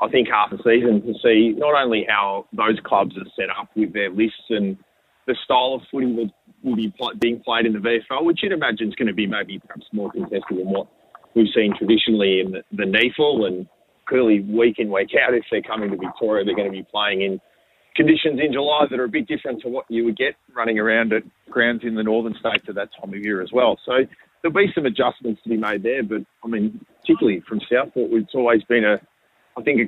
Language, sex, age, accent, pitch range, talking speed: English, male, 40-59, Australian, 105-125 Hz, 240 wpm